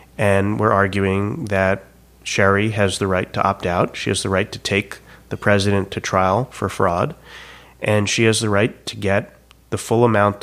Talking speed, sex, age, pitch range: 190 wpm, male, 30-49, 95-115 Hz